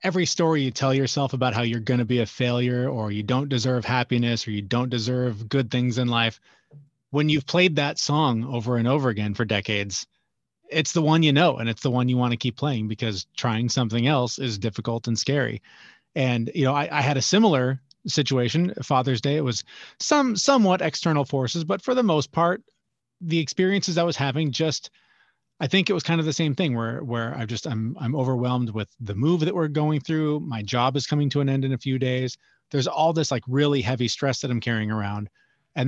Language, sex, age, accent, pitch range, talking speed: English, male, 30-49, American, 120-150 Hz, 220 wpm